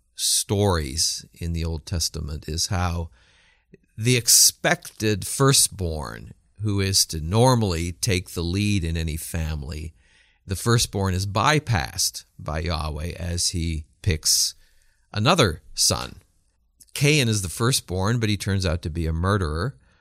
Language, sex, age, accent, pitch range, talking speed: English, male, 50-69, American, 85-110 Hz, 130 wpm